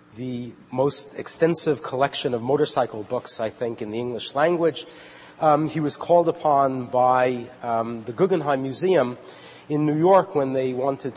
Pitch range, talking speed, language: 120-150 Hz, 155 wpm, English